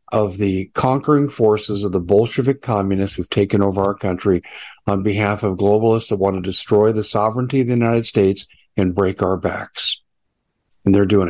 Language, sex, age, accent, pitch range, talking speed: English, male, 50-69, American, 100-140 Hz, 180 wpm